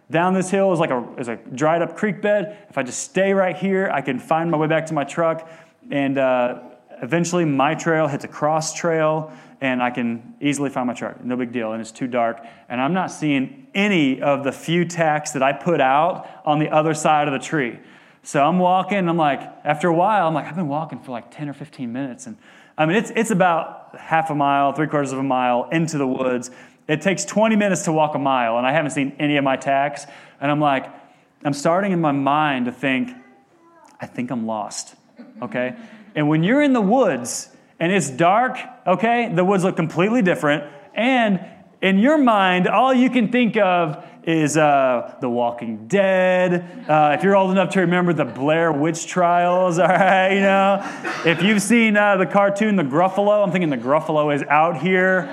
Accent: American